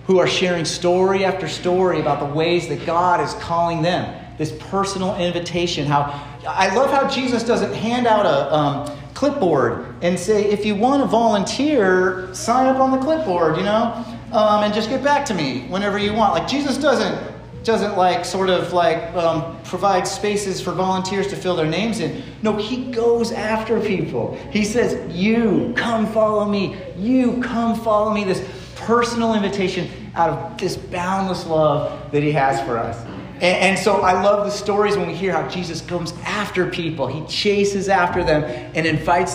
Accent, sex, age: American, male, 30-49